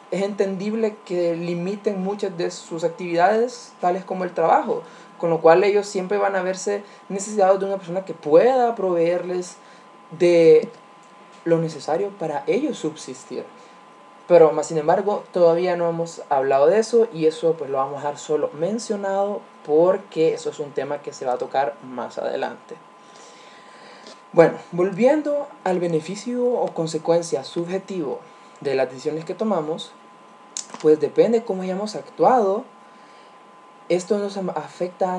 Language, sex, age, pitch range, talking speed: Spanish, male, 20-39, 170-210 Hz, 145 wpm